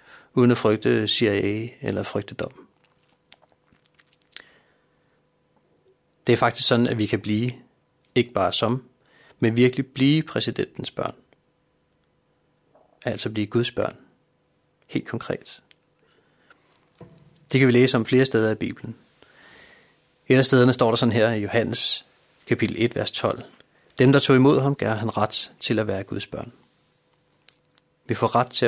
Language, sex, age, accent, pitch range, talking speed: Danish, male, 30-49, native, 115-130 Hz, 140 wpm